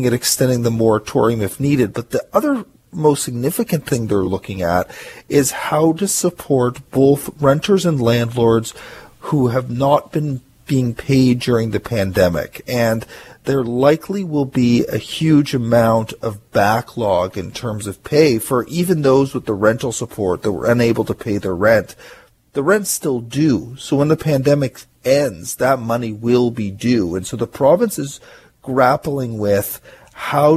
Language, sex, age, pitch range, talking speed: English, male, 40-59, 110-135 Hz, 160 wpm